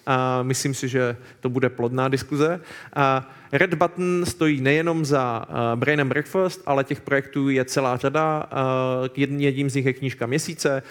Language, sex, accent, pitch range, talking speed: Czech, male, native, 130-145 Hz, 160 wpm